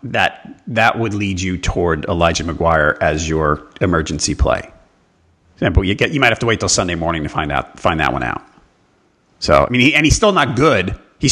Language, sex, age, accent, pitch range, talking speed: English, male, 40-59, American, 85-110 Hz, 210 wpm